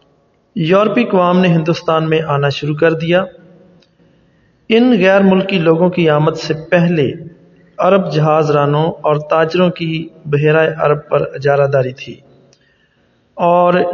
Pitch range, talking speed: 150-185 Hz, 130 wpm